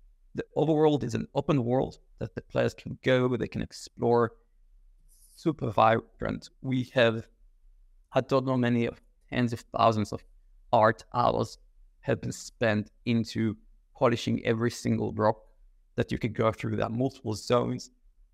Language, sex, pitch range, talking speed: English, male, 110-130 Hz, 145 wpm